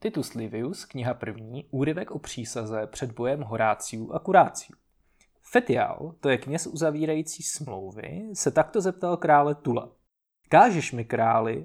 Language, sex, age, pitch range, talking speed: Czech, male, 20-39, 120-160 Hz, 135 wpm